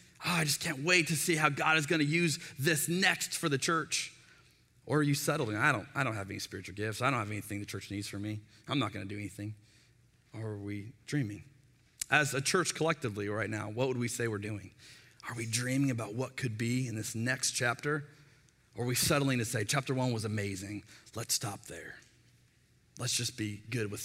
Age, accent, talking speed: 30-49, American, 225 wpm